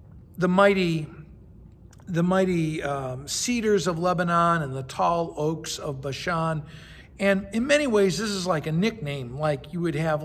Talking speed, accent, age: 160 wpm, American, 50-69